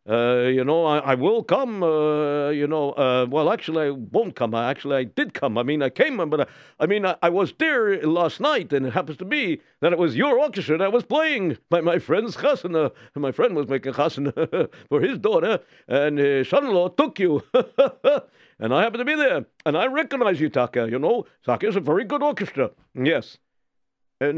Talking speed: 215 wpm